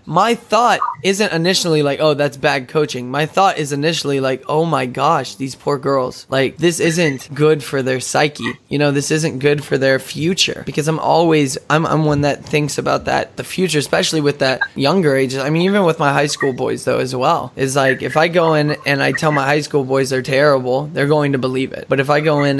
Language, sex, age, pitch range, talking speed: English, male, 10-29, 130-155 Hz, 235 wpm